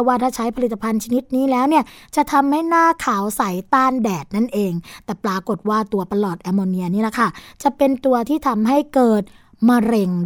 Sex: female